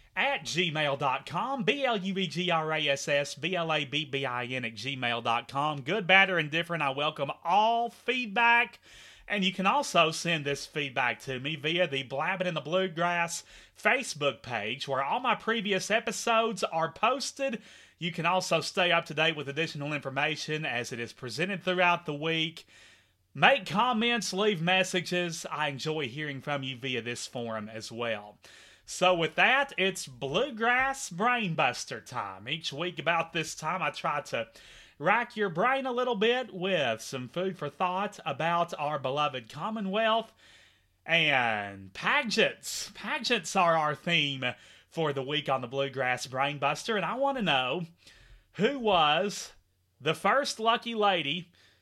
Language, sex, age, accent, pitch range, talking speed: English, male, 30-49, American, 140-200 Hz, 140 wpm